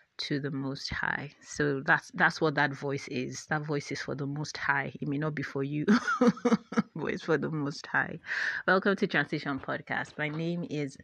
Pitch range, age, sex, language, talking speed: 145-170 Hz, 30-49, female, English, 200 wpm